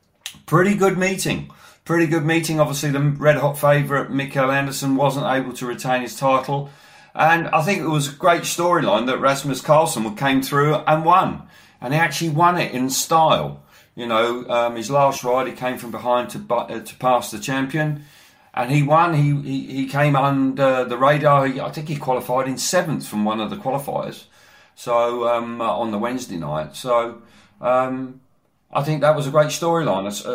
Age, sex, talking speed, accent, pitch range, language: 40-59, male, 180 wpm, British, 115-145 Hz, English